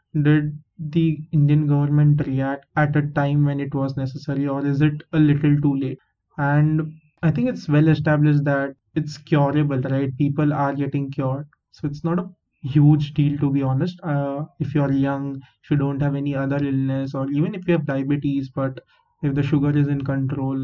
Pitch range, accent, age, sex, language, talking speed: 140-155 Hz, Indian, 20-39, male, English, 190 wpm